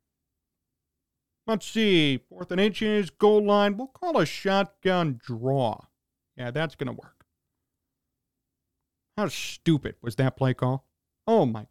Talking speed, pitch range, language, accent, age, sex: 130 wpm, 140-230 Hz, English, American, 40-59, male